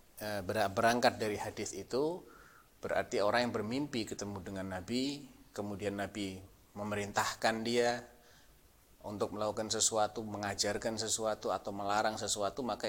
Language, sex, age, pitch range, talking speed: Indonesian, male, 30-49, 100-125 Hz, 110 wpm